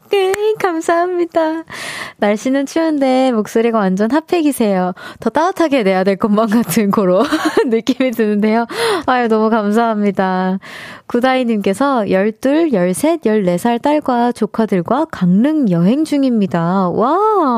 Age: 20-39